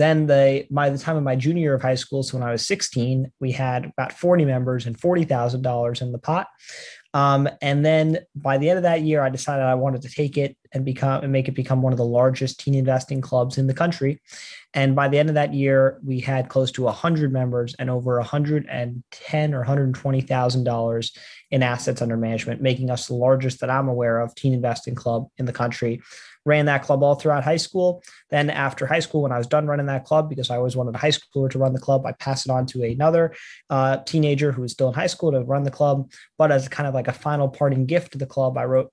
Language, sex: English, male